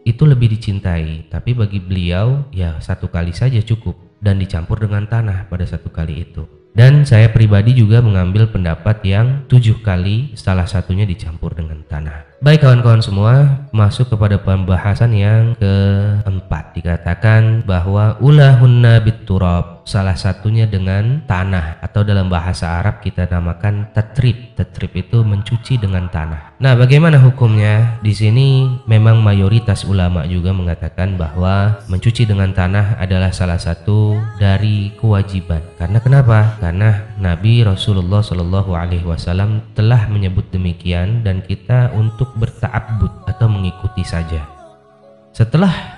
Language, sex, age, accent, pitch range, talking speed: Indonesian, male, 20-39, native, 95-115 Hz, 130 wpm